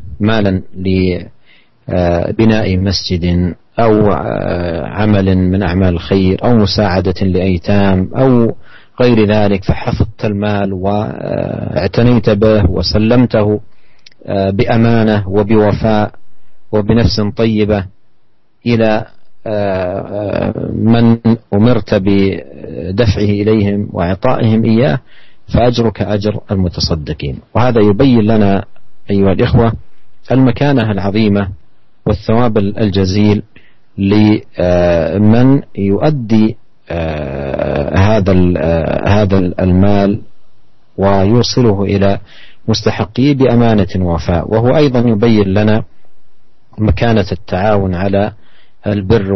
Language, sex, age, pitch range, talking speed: Indonesian, male, 40-59, 95-115 Hz, 75 wpm